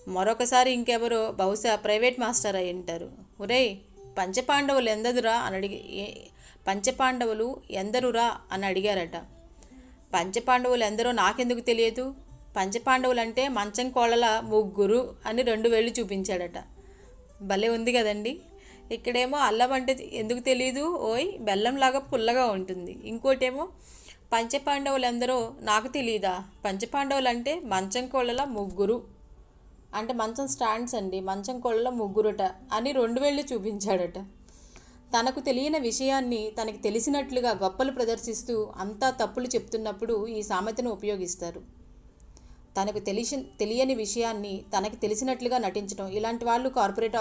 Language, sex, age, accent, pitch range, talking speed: English, female, 30-49, Indian, 205-250 Hz, 100 wpm